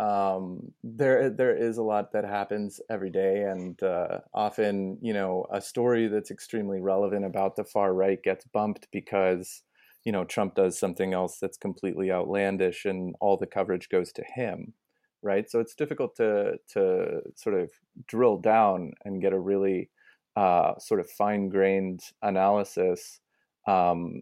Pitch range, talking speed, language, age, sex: 95-125 Hz, 155 wpm, English, 30-49, male